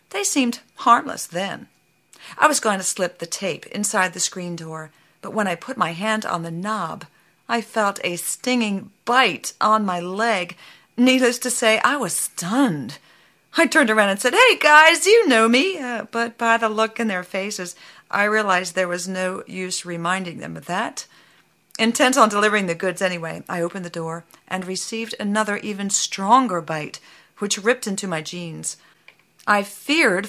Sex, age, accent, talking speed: female, 50-69, American, 175 wpm